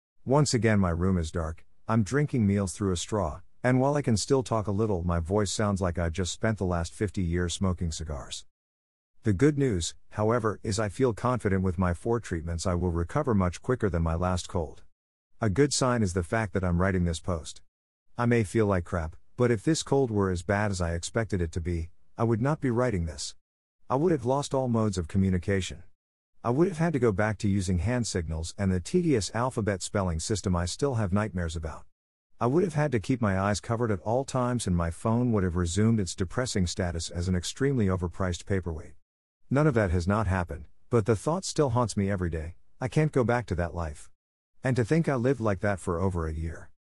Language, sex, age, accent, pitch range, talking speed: English, male, 50-69, American, 85-115 Hz, 225 wpm